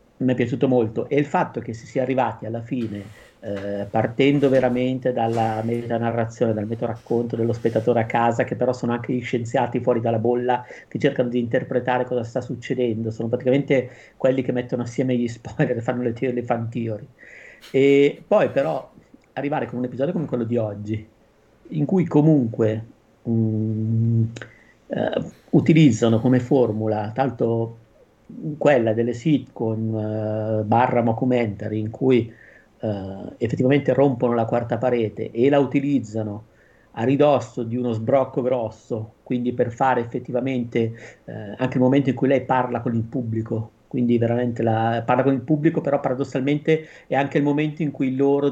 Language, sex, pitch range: Italian, male, 115-130 Hz